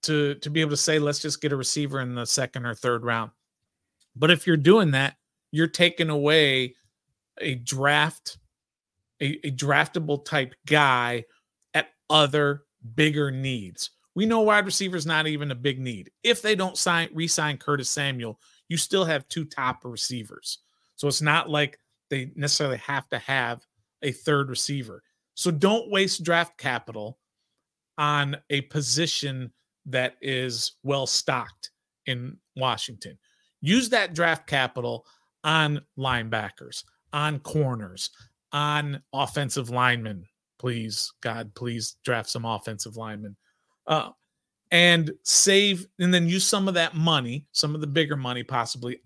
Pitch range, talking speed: 125-160 Hz, 145 wpm